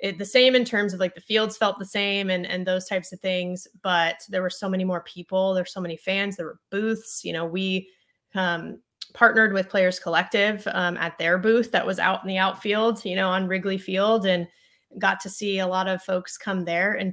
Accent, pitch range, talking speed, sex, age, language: American, 180-210 Hz, 230 wpm, female, 20-39, English